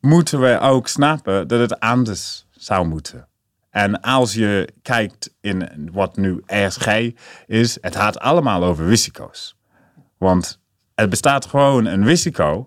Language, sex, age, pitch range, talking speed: Dutch, male, 30-49, 95-120 Hz, 135 wpm